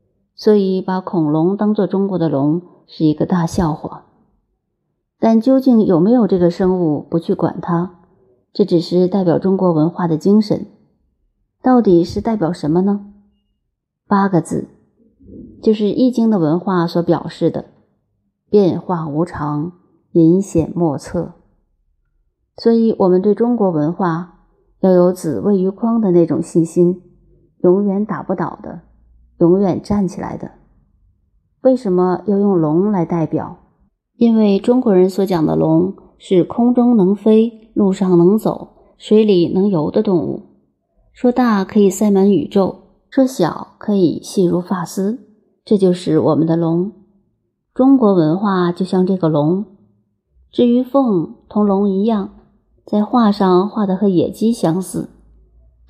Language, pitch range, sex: Chinese, 165-205 Hz, female